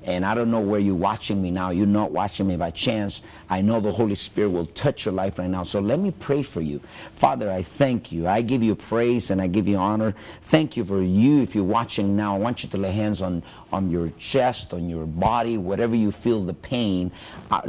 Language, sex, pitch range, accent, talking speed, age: English, male, 95-120 Hz, American, 245 wpm, 50-69